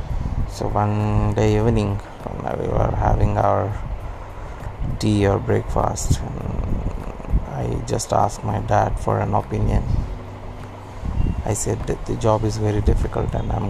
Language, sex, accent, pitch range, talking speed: English, male, Indian, 95-110 Hz, 130 wpm